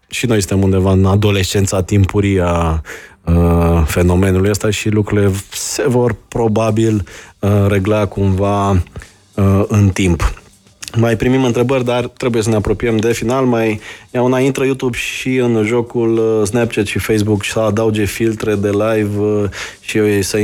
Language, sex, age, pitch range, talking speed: Romanian, male, 20-39, 100-115 Hz, 150 wpm